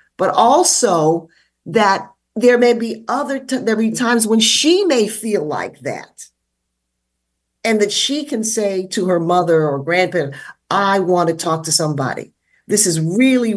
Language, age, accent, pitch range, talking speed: English, 50-69, American, 165-220 Hz, 165 wpm